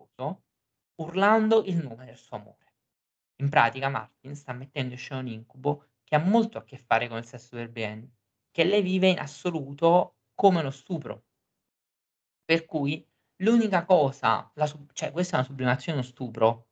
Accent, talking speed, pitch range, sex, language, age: native, 165 wpm, 125-150 Hz, male, Italian, 20-39